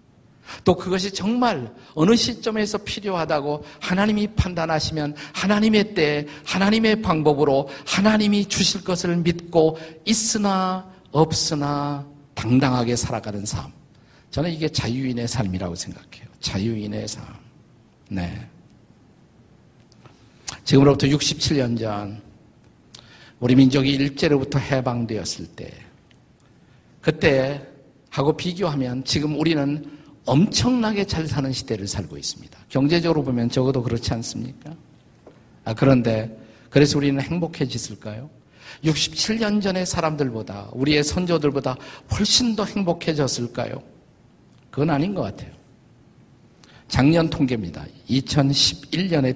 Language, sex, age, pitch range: Korean, male, 50-69, 125-170 Hz